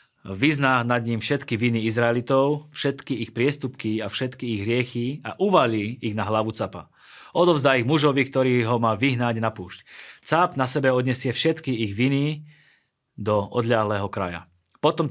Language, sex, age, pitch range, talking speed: Slovak, male, 30-49, 110-135 Hz, 155 wpm